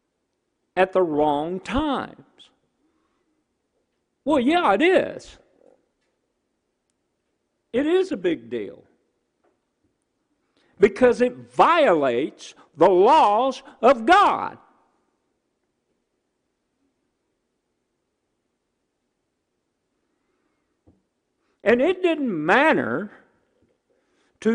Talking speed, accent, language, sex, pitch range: 60 wpm, American, English, male, 225-315 Hz